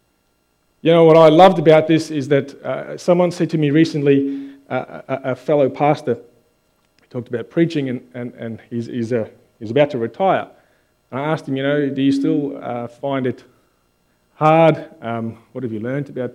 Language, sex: English, male